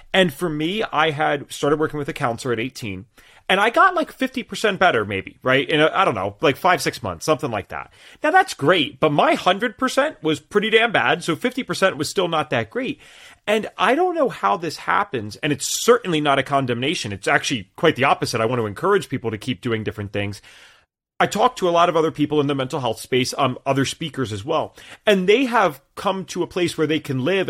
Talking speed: 225 wpm